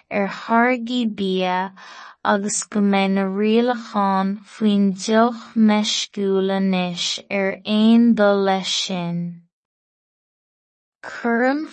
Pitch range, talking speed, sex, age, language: 195-225 Hz, 55 wpm, female, 20-39, English